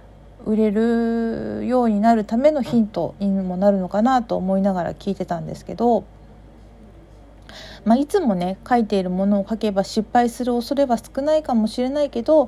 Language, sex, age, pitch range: Japanese, female, 40-59, 185-245 Hz